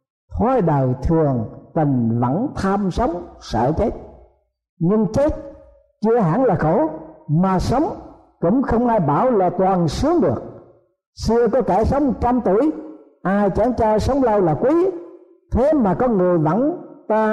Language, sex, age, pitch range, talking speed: Vietnamese, male, 60-79, 160-235 Hz, 150 wpm